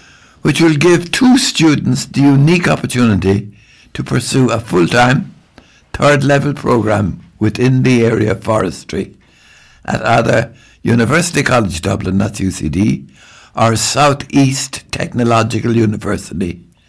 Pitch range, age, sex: 95-130 Hz, 60-79, male